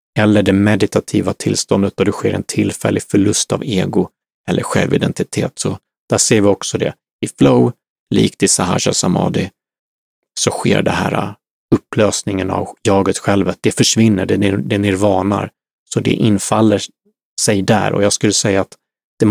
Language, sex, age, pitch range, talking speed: Swedish, male, 30-49, 100-110 Hz, 155 wpm